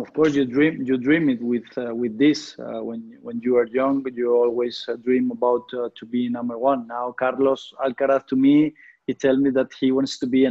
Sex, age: male, 20-39